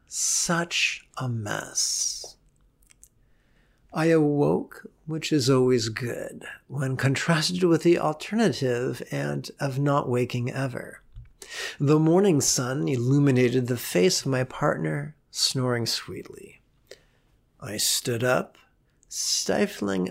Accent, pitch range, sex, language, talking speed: American, 125-155 Hz, male, English, 100 wpm